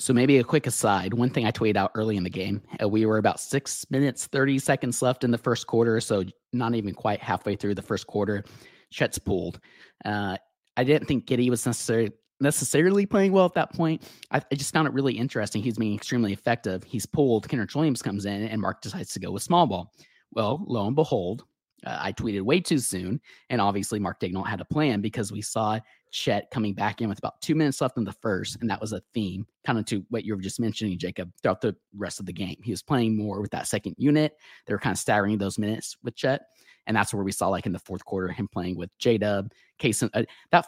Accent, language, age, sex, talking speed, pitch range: American, English, 30-49, male, 240 wpm, 100-125 Hz